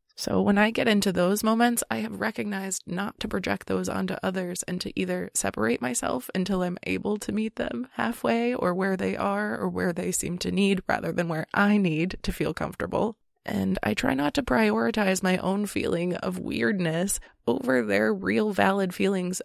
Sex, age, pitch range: female, 20-39, 180-205 Hz